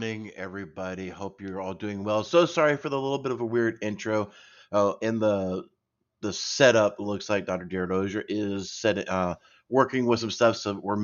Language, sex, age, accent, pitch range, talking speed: English, male, 30-49, American, 95-110 Hz, 195 wpm